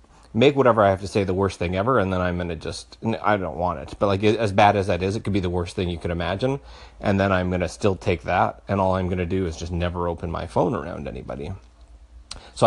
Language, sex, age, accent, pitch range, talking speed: English, male, 30-49, American, 85-105 Hz, 280 wpm